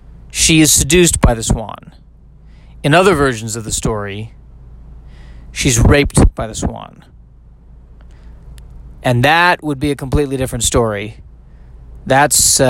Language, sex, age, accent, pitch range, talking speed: English, male, 30-49, American, 110-150 Hz, 125 wpm